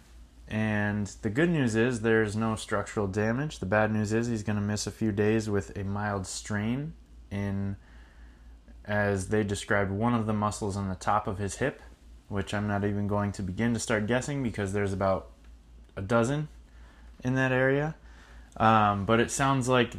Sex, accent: male, American